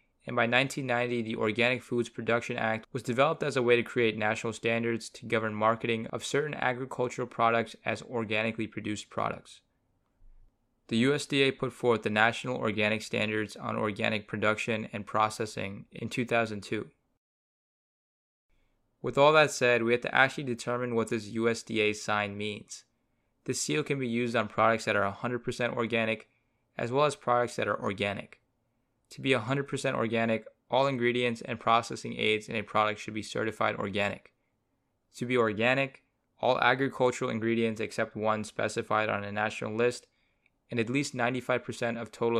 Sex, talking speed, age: male, 155 wpm, 20-39